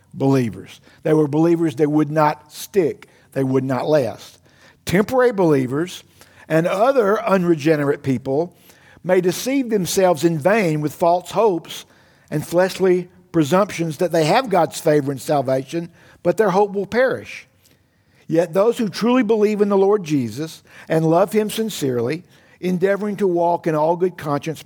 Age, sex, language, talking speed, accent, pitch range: 50-69, male, English, 150 wpm, American, 130-180 Hz